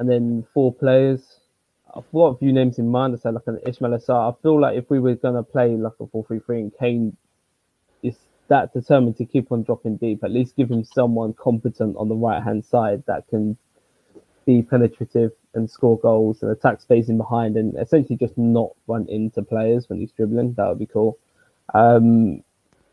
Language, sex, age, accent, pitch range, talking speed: English, male, 20-39, British, 110-125 Hz, 205 wpm